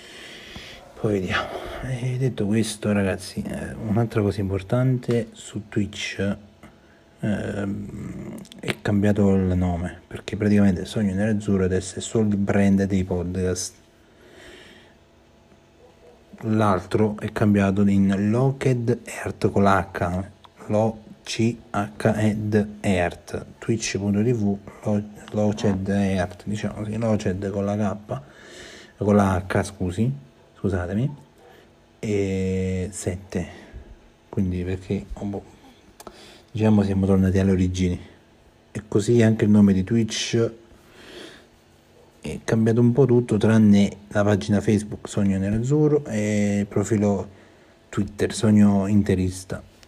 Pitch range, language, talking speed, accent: 95-110 Hz, Italian, 105 wpm, native